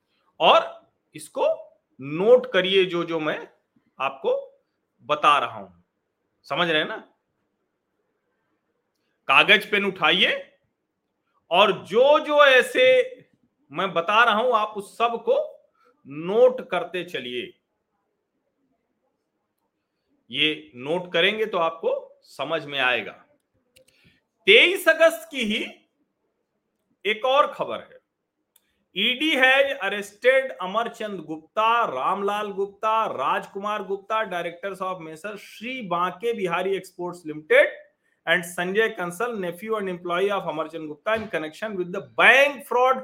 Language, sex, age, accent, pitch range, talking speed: Hindi, male, 40-59, native, 170-255 Hz, 105 wpm